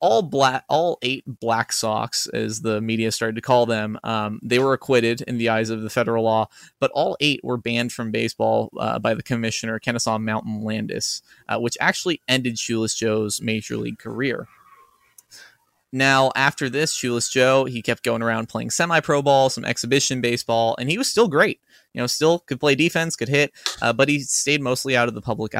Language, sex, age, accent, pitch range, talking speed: English, male, 20-39, American, 115-145 Hz, 195 wpm